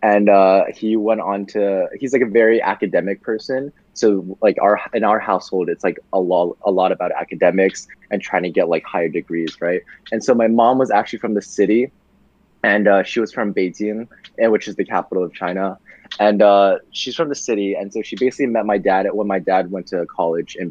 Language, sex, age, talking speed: English, male, 20-39, 215 wpm